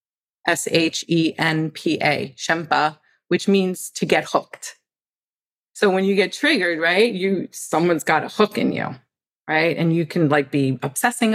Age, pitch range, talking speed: 40-59, 160-210 Hz, 145 wpm